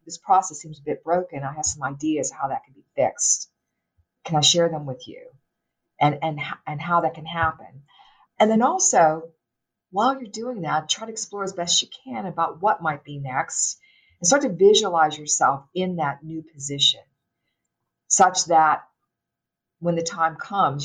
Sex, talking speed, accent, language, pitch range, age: female, 180 wpm, American, English, 145-185 Hz, 50-69